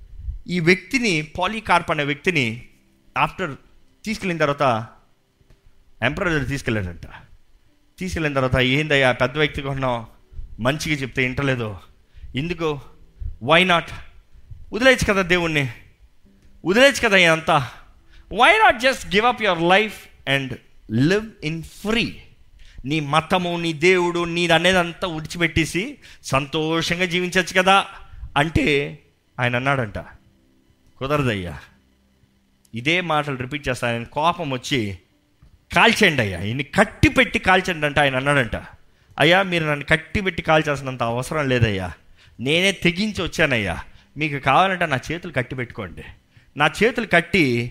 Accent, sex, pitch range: native, male, 115-175 Hz